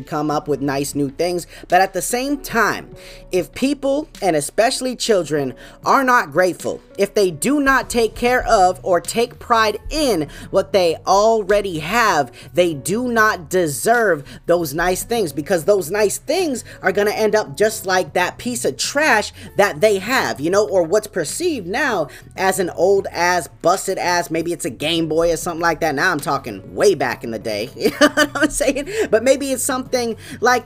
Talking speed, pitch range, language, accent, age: 195 wpm, 155-215 Hz, English, American, 20-39